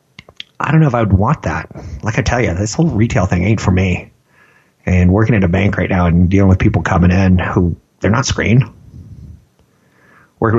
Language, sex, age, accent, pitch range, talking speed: English, male, 30-49, American, 90-110 Hz, 210 wpm